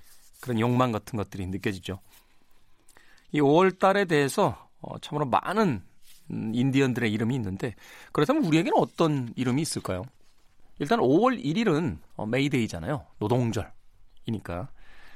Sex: male